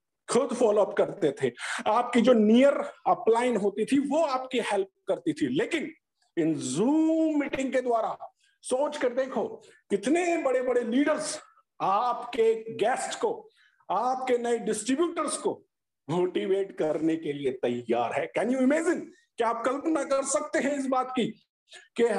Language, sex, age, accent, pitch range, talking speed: Hindi, male, 50-69, native, 225-310 Hz, 140 wpm